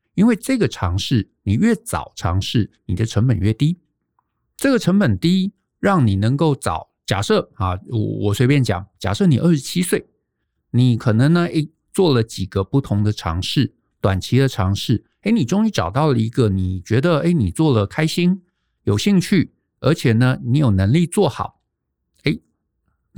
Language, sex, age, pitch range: Chinese, male, 50-69, 100-155 Hz